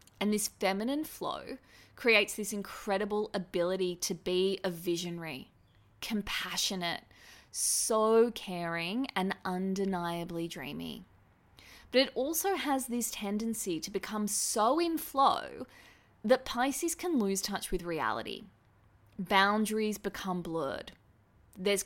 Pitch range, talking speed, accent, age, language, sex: 180-230 Hz, 110 wpm, Australian, 20-39, English, female